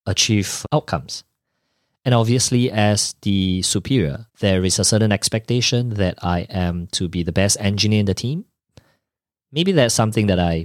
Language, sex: English, male